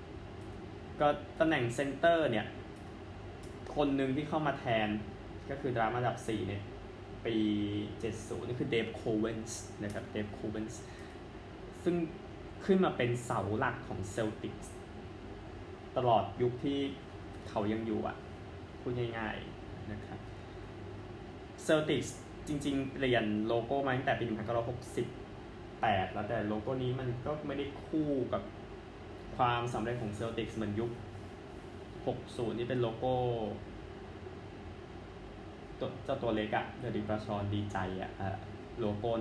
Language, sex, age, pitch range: Thai, male, 20-39, 100-125 Hz